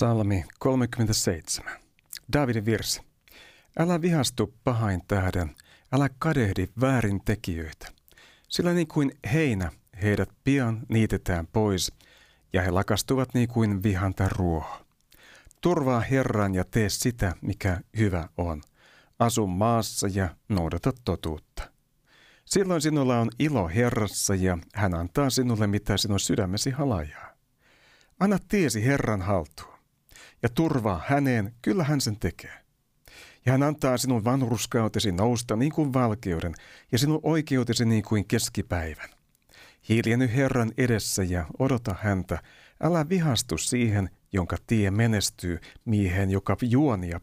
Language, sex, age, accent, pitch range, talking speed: Finnish, male, 60-79, native, 95-130 Hz, 120 wpm